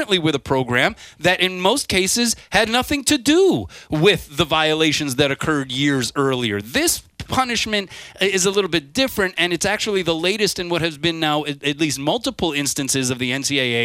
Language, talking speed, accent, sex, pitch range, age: English, 180 wpm, American, male, 135-175 Hz, 30-49